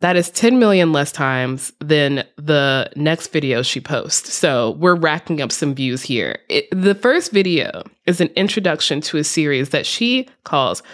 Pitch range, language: 150-205 Hz, English